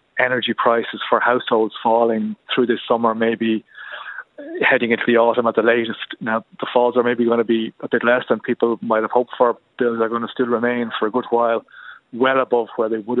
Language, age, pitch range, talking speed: English, 30-49, 110-125 Hz, 220 wpm